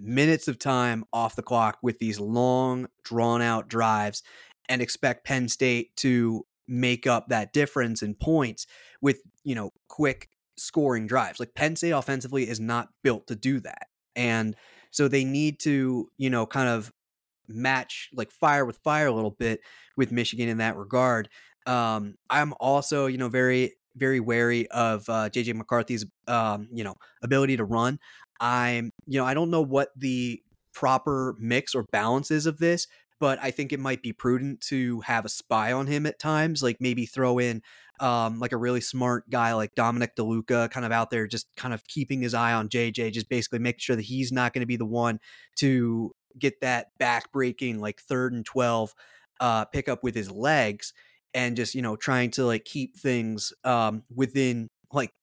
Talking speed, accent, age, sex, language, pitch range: 185 wpm, American, 20-39, male, English, 115-130 Hz